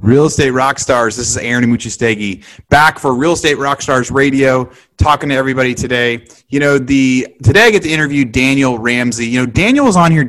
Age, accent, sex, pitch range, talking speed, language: 30-49, American, male, 120-145 Hz, 205 wpm, English